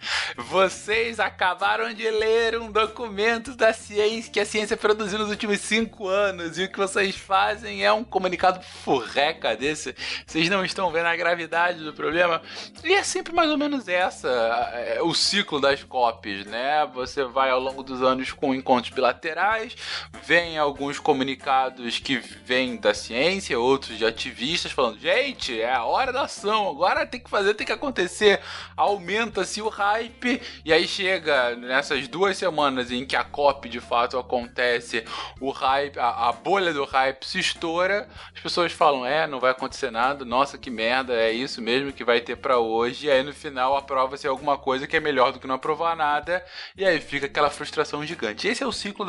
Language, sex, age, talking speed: Portuguese, male, 20-39, 180 wpm